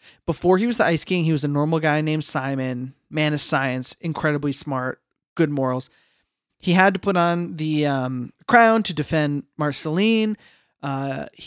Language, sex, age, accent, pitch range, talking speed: English, male, 20-39, American, 145-180 Hz, 170 wpm